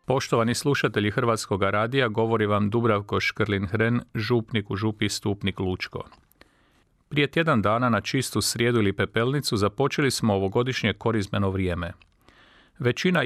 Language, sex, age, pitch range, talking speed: Croatian, male, 40-59, 100-130 Hz, 130 wpm